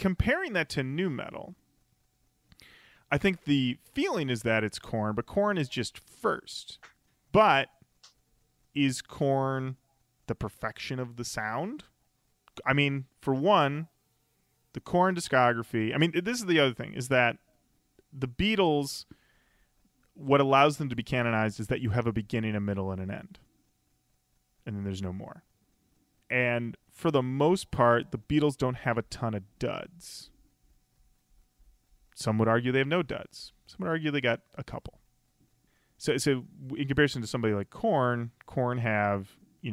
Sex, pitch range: male, 110-140 Hz